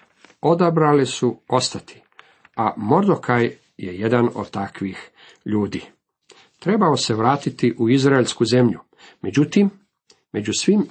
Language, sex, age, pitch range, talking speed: Croatian, male, 50-69, 110-145 Hz, 105 wpm